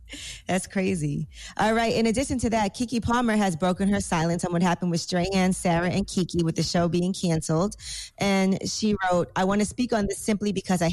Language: English